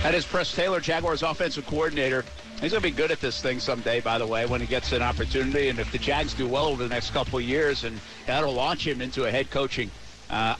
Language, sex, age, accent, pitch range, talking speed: English, male, 50-69, American, 115-160 Hz, 260 wpm